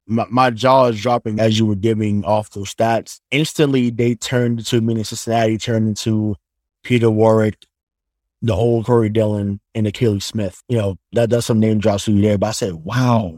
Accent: American